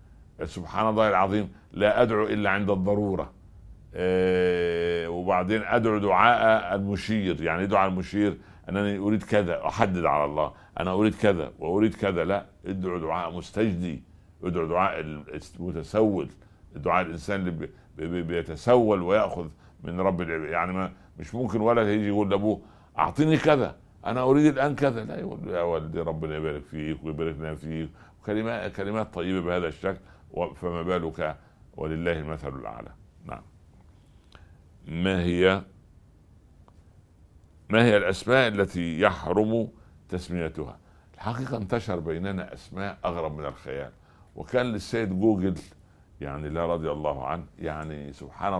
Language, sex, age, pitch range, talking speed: Arabic, male, 60-79, 85-105 Hz, 130 wpm